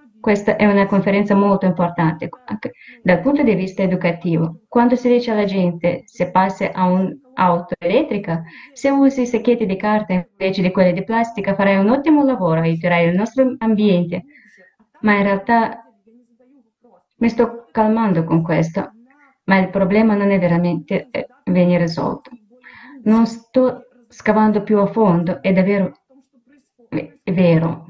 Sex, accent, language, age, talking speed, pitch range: female, native, Italian, 20-39, 140 wpm, 185-230 Hz